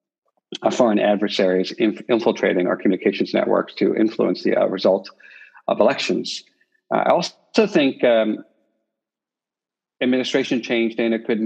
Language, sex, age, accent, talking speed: English, male, 40-59, American, 120 wpm